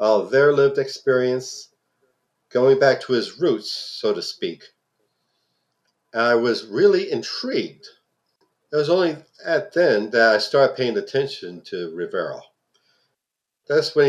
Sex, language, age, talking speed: male, English, 50-69, 135 wpm